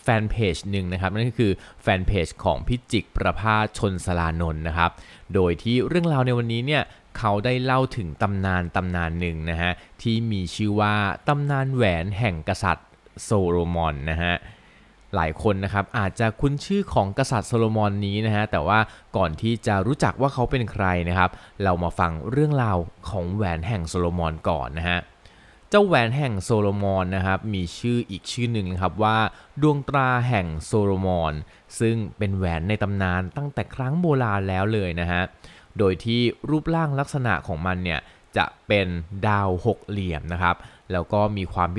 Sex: male